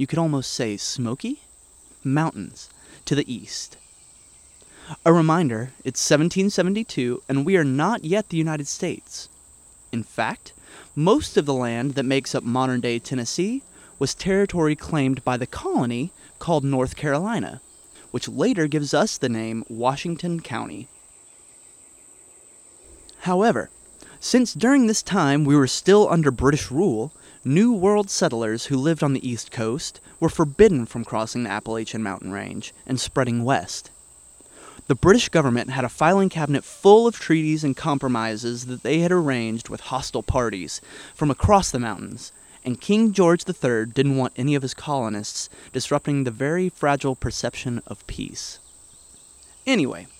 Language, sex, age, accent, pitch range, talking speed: English, male, 30-49, American, 120-170 Hz, 145 wpm